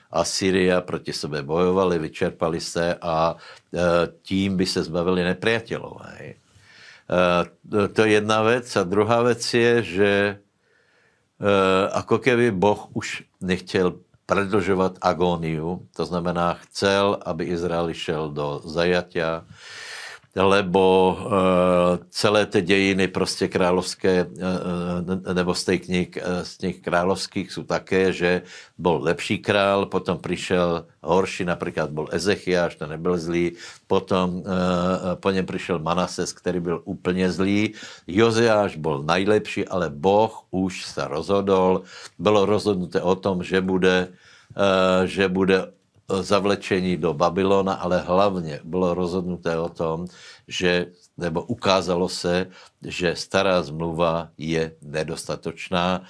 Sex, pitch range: male, 85-95 Hz